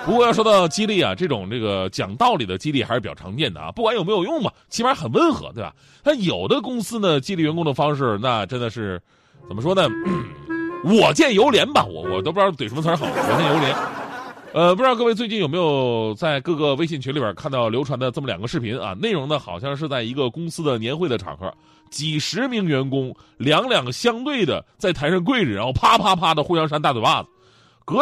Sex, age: male, 30-49